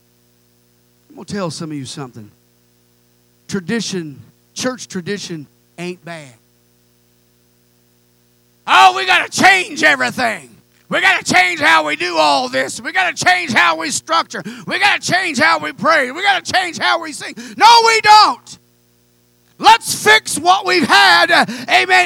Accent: American